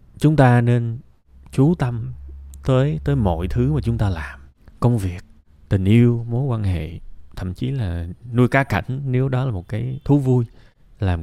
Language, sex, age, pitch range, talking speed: Vietnamese, male, 20-39, 95-125 Hz, 180 wpm